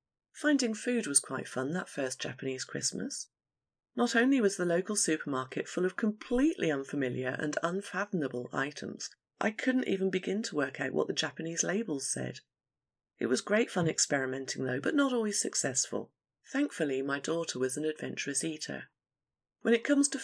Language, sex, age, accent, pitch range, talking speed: English, female, 30-49, British, 155-235 Hz, 165 wpm